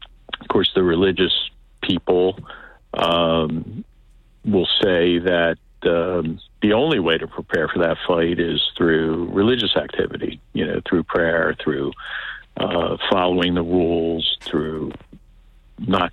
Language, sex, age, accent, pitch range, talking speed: English, male, 50-69, American, 80-95 Hz, 125 wpm